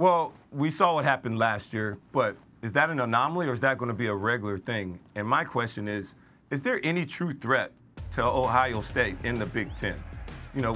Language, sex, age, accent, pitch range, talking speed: English, male, 40-59, American, 125-160 Hz, 215 wpm